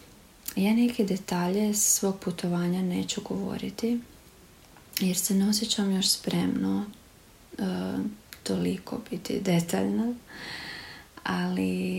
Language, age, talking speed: Croatian, 30-49, 85 wpm